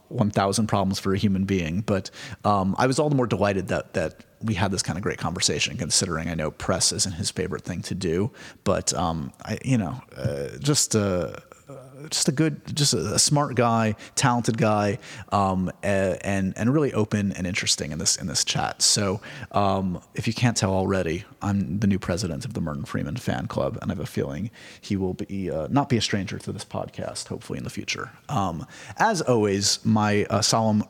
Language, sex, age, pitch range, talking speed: English, male, 30-49, 100-125 Hz, 205 wpm